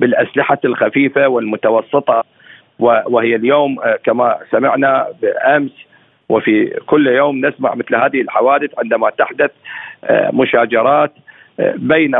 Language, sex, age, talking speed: Arabic, male, 50-69, 95 wpm